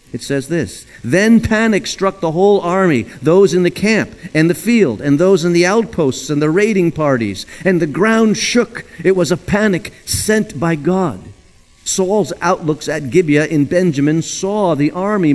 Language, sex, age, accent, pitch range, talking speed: English, male, 50-69, American, 145-185 Hz, 175 wpm